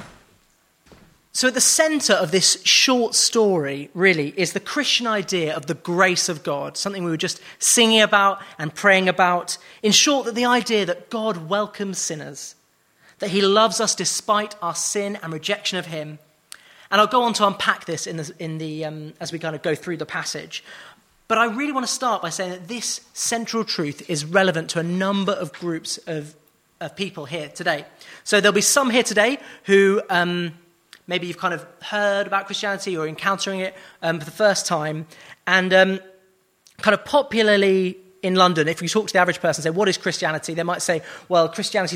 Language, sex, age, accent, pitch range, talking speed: English, male, 30-49, British, 165-205 Hz, 195 wpm